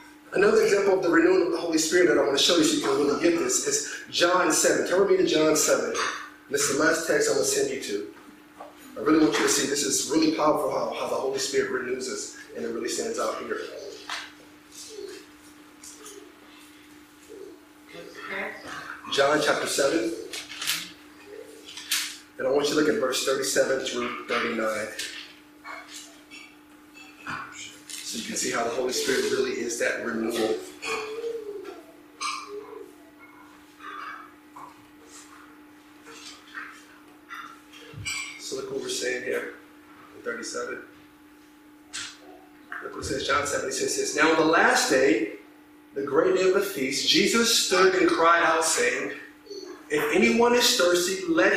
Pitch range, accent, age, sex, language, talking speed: 295-410 Hz, American, 30-49, male, English, 150 wpm